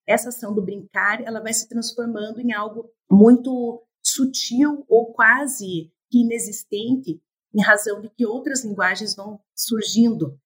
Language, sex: Portuguese, female